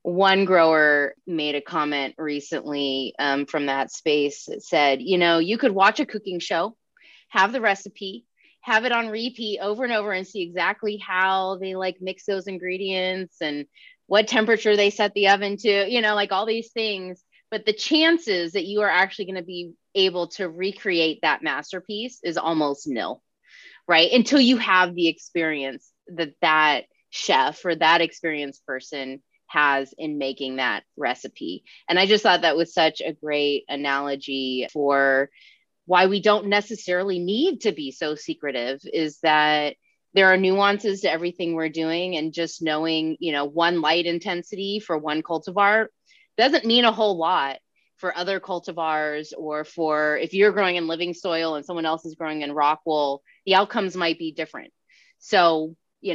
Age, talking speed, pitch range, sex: 20-39, 170 wpm, 155-205 Hz, female